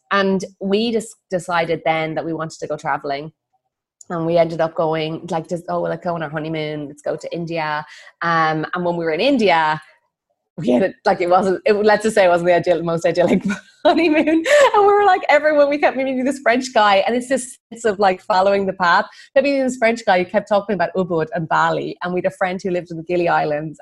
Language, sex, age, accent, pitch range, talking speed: English, female, 30-49, Irish, 165-215 Hz, 235 wpm